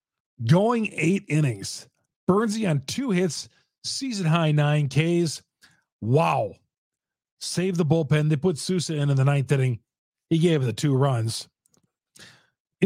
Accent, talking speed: American, 140 wpm